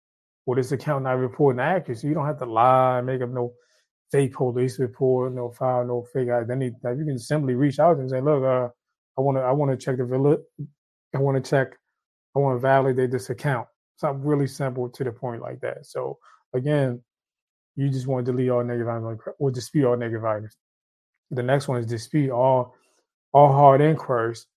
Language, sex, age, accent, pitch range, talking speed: English, male, 20-39, American, 125-145 Hz, 200 wpm